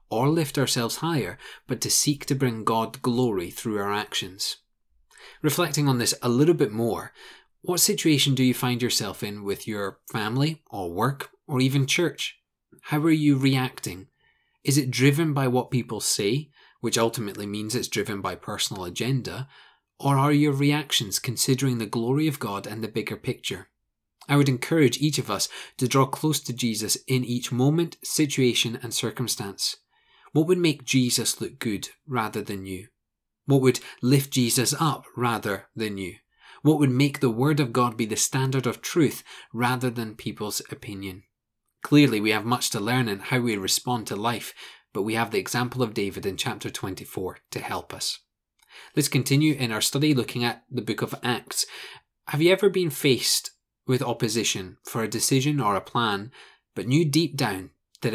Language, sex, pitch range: English, male, 115-145 Hz